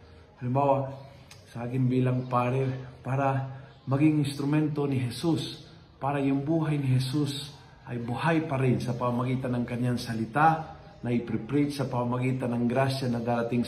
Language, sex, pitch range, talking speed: Filipino, male, 115-140 Hz, 140 wpm